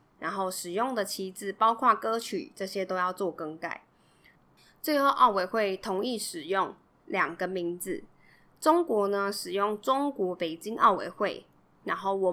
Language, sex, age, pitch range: Chinese, female, 20-39, 185-230 Hz